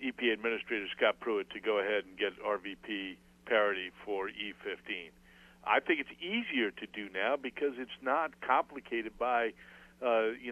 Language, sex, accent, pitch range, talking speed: English, male, American, 105-135 Hz, 155 wpm